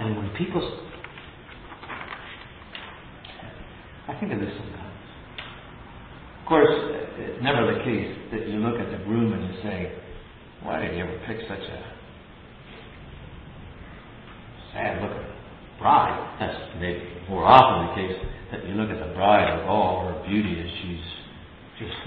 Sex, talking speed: male, 145 wpm